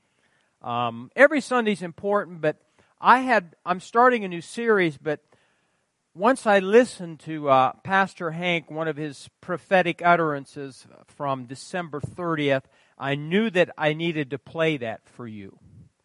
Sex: male